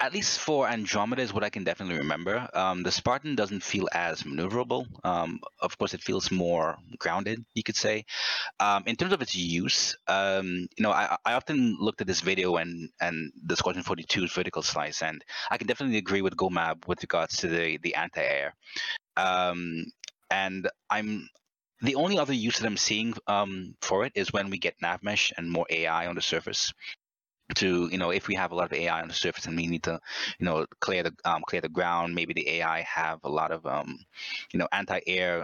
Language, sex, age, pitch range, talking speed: English, male, 30-49, 85-100 Hz, 210 wpm